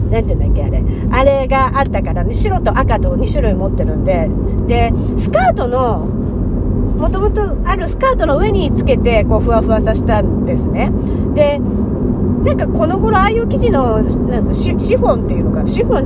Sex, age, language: female, 40-59, Japanese